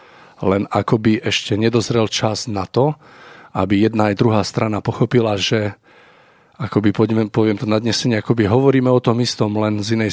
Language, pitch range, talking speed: Slovak, 100-110 Hz, 160 wpm